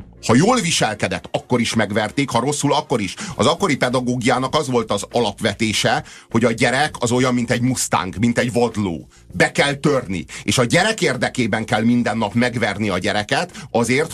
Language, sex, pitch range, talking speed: Hungarian, male, 100-125 Hz, 180 wpm